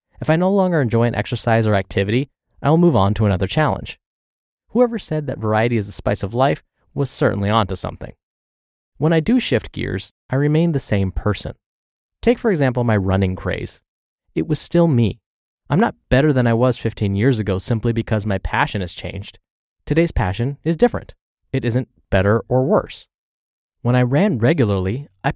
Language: English